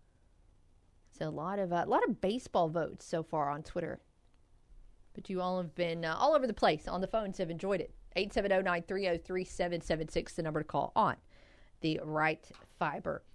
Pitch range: 175-250 Hz